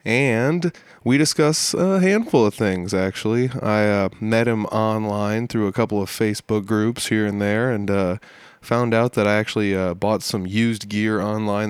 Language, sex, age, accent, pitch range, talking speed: English, male, 20-39, American, 110-135 Hz, 180 wpm